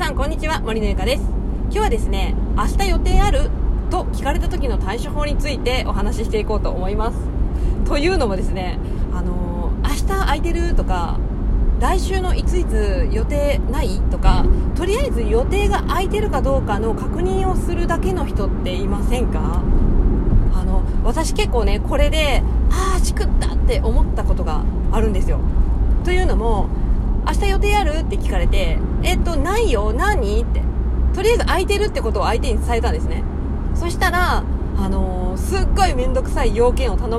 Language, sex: Japanese, female